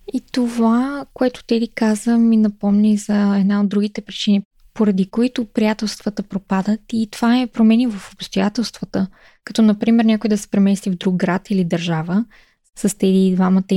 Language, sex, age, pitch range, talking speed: Bulgarian, female, 20-39, 195-225 Hz, 160 wpm